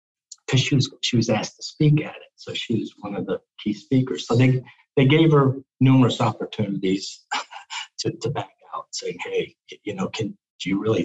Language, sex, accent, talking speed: English, male, American, 195 wpm